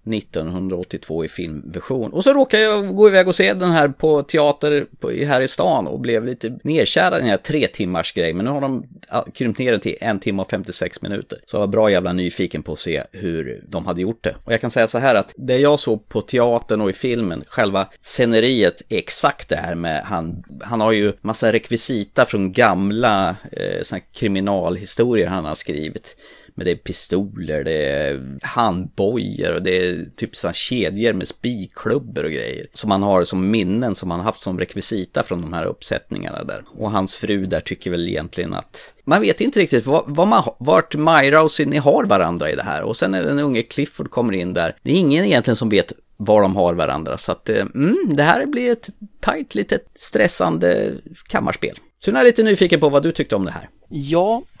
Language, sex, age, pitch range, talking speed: Swedish, male, 30-49, 95-150 Hz, 205 wpm